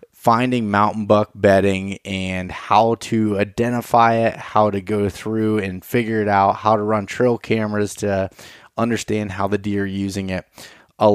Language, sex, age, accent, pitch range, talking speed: English, male, 20-39, American, 100-110 Hz, 165 wpm